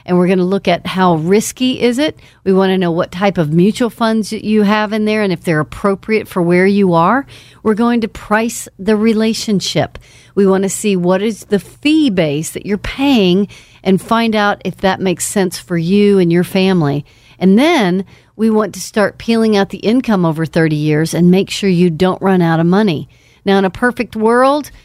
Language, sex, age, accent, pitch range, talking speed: English, female, 50-69, American, 175-225 Hz, 215 wpm